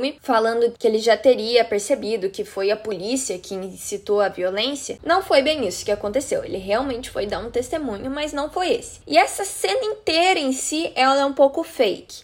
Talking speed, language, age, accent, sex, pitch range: 200 wpm, Portuguese, 10-29, Brazilian, female, 215-300 Hz